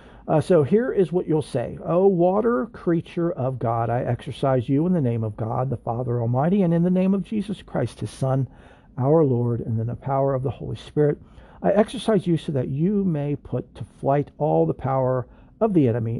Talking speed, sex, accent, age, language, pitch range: 215 wpm, male, American, 50-69, English, 125-160 Hz